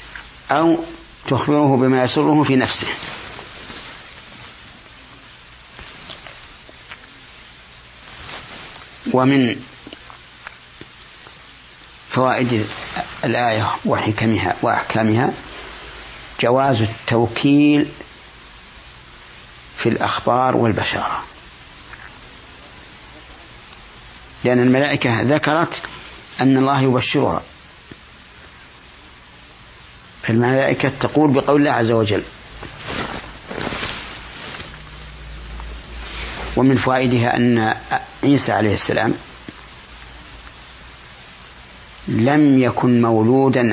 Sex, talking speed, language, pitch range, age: male, 50 wpm, Arabic, 110-135 Hz, 60-79